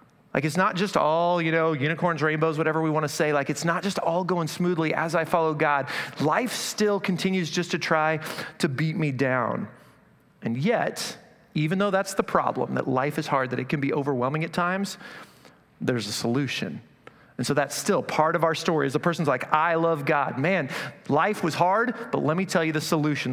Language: English